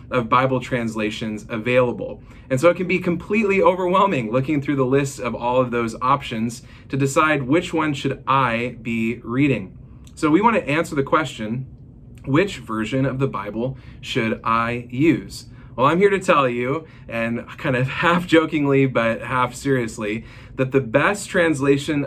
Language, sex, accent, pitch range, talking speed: English, male, American, 115-140 Hz, 165 wpm